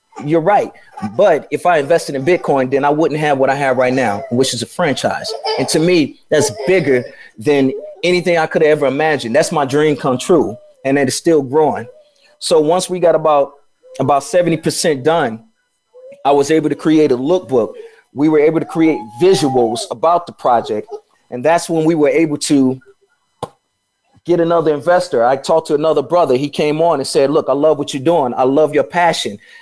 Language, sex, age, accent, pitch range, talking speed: English, male, 30-49, American, 140-175 Hz, 195 wpm